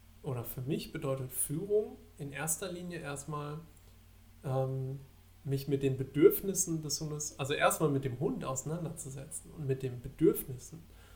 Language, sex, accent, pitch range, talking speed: German, male, German, 115-145 Hz, 140 wpm